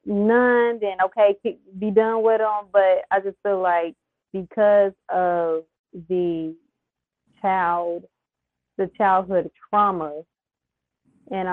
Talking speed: 105 wpm